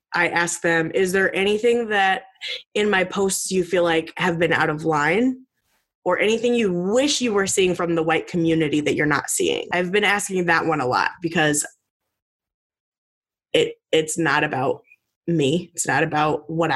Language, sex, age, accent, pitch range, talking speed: English, female, 20-39, American, 165-215 Hz, 180 wpm